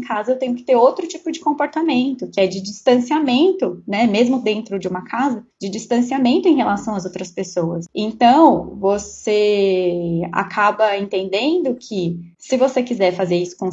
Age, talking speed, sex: 20-39, 160 wpm, female